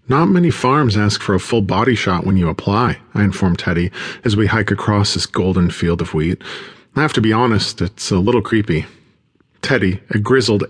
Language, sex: English, male